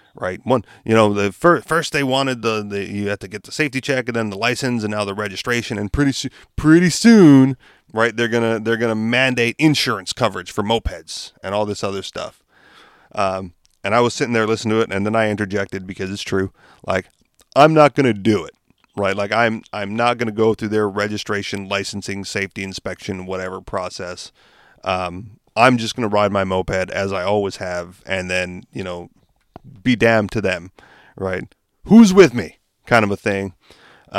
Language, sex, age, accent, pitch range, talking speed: English, male, 30-49, American, 95-120 Hz, 205 wpm